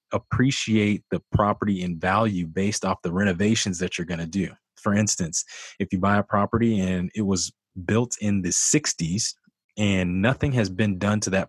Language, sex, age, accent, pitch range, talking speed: English, male, 20-39, American, 90-105 Hz, 185 wpm